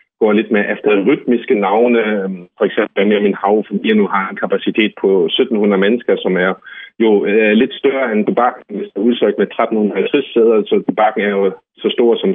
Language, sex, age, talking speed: Danish, male, 30-49, 185 wpm